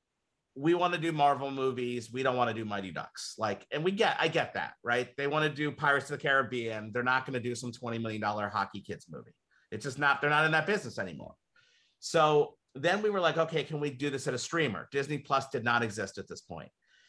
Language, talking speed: English, 245 wpm